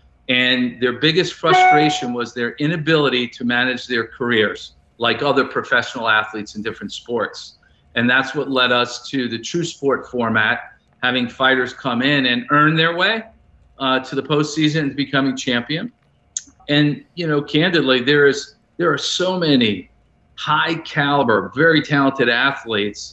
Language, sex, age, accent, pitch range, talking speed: English, male, 50-69, American, 125-155 Hz, 150 wpm